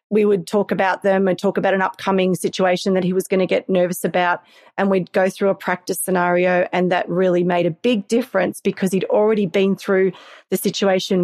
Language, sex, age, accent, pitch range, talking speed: English, female, 30-49, Australian, 185-220 Hz, 215 wpm